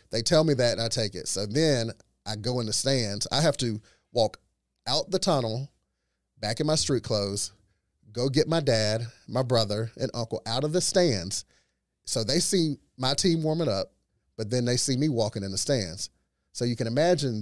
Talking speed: 205 wpm